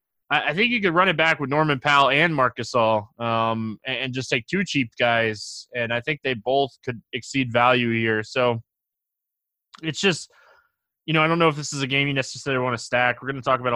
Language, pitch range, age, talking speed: English, 115-150 Hz, 20-39, 225 wpm